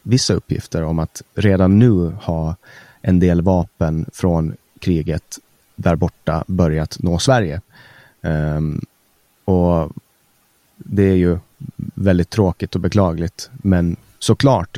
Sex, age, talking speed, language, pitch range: male, 30-49, 110 wpm, Swedish, 85-105 Hz